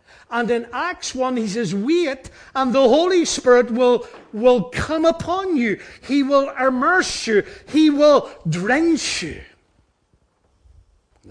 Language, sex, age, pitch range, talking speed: English, male, 60-79, 190-285 Hz, 135 wpm